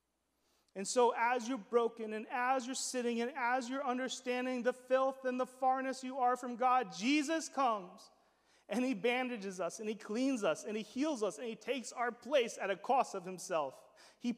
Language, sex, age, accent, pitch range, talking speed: English, male, 30-49, American, 200-270 Hz, 195 wpm